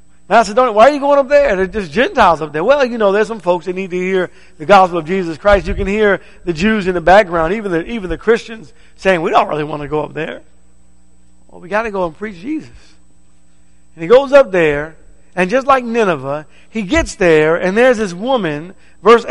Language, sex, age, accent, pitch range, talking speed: English, male, 50-69, American, 170-220 Hz, 230 wpm